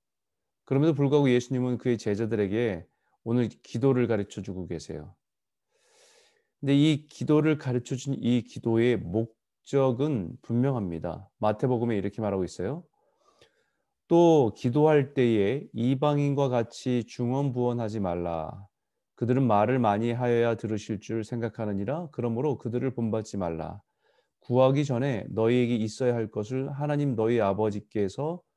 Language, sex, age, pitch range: Korean, male, 30-49, 110-140 Hz